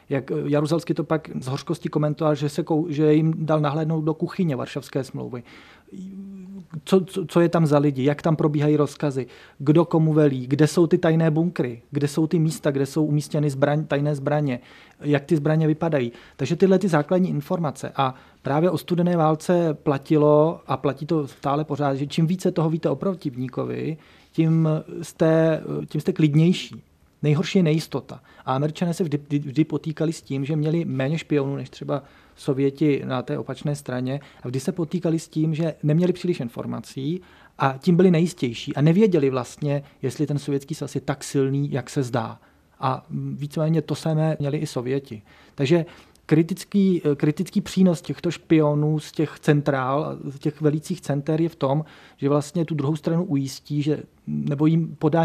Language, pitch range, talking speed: Czech, 140-165 Hz, 165 wpm